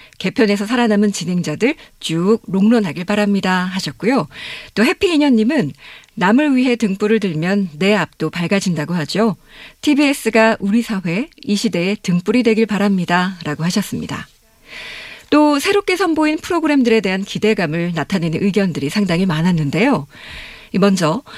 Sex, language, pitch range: female, Korean, 180-255 Hz